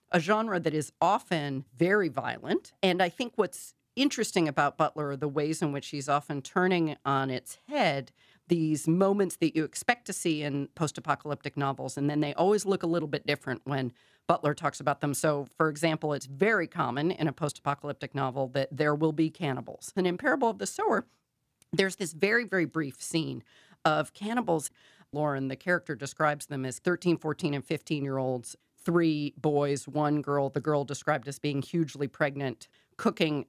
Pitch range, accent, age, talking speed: 145-180 Hz, American, 40-59, 180 wpm